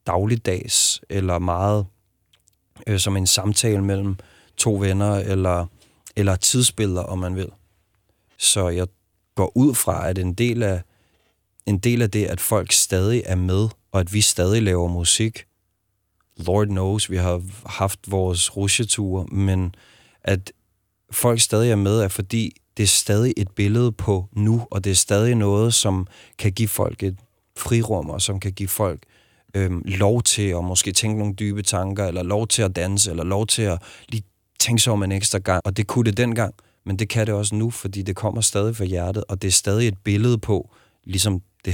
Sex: male